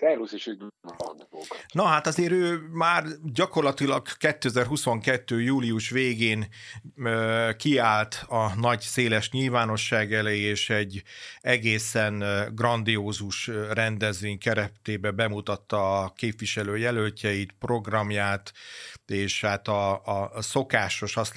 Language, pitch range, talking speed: Hungarian, 105-120 Hz, 90 wpm